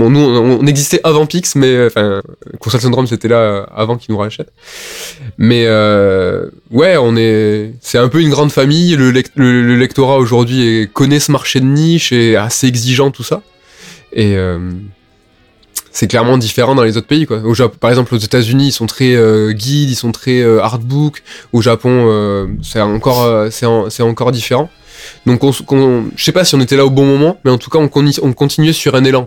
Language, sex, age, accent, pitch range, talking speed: French, male, 20-39, French, 115-140 Hz, 215 wpm